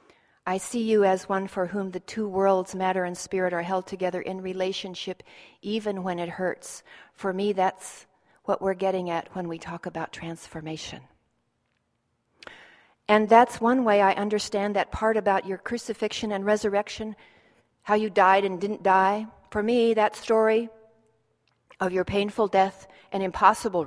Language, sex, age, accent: English, female, 40-59, American